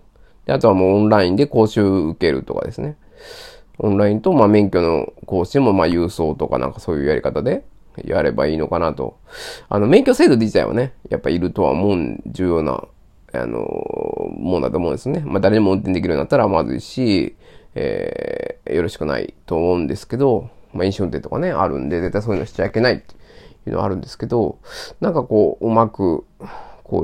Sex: male